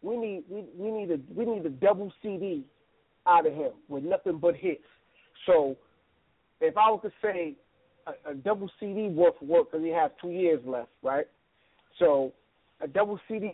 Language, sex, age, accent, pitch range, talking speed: English, male, 40-59, American, 170-245 Hz, 200 wpm